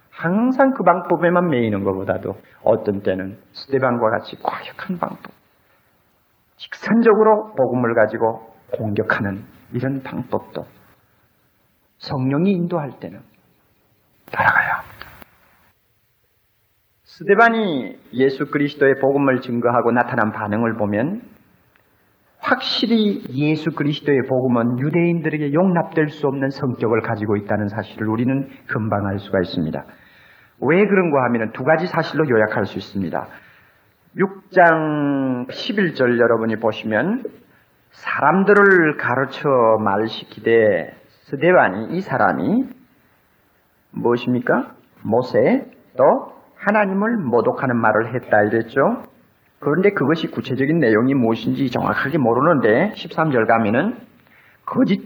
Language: Korean